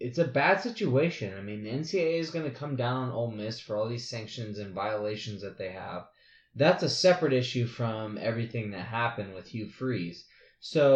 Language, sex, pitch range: English, male, 110-140 Hz